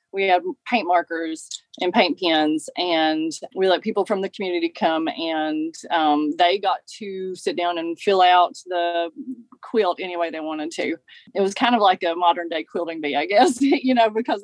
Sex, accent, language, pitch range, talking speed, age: female, American, English, 170-220 Hz, 195 wpm, 30-49